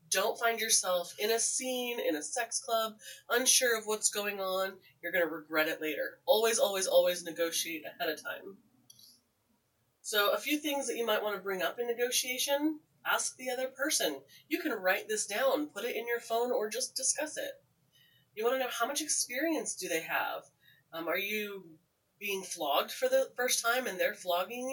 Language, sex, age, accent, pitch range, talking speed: English, female, 30-49, American, 180-270 Hz, 195 wpm